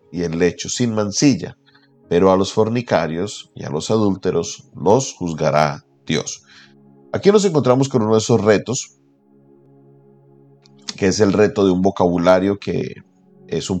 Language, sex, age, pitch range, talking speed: Spanish, male, 40-59, 80-105 Hz, 150 wpm